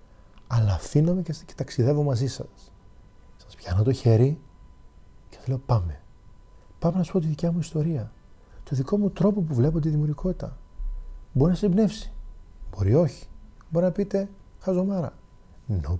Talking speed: 150 wpm